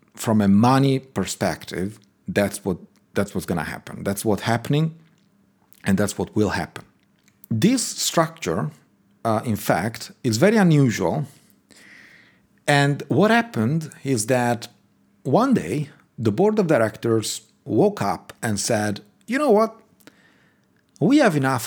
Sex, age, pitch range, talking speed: male, 40-59, 100-135 Hz, 130 wpm